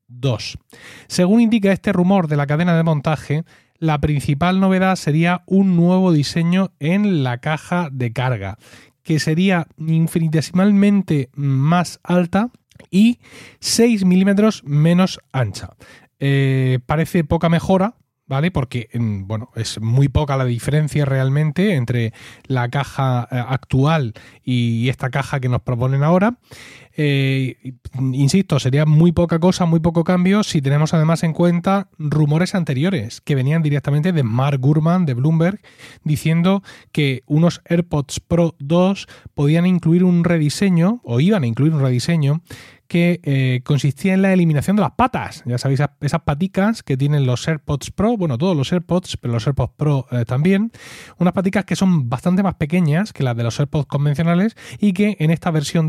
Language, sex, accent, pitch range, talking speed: Spanish, male, Spanish, 135-180 Hz, 150 wpm